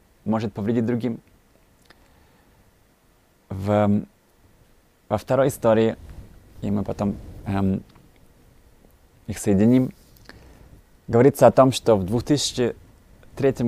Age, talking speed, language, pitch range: 20-39, 85 wpm, Russian, 100-125 Hz